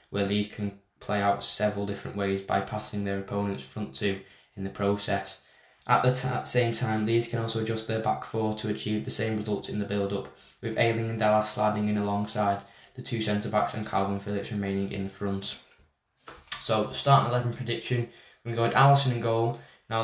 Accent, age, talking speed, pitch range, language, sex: British, 10-29, 210 wpm, 100-115 Hz, English, male